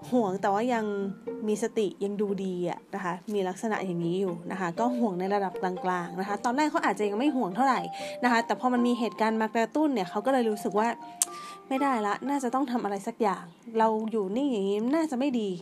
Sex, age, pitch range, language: female, 20-39, 200-265 Hz, Thai